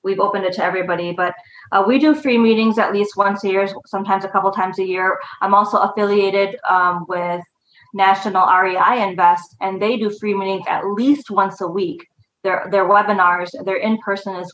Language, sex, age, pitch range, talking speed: English, female, 20-39, 185-215 Hz, 195 wpm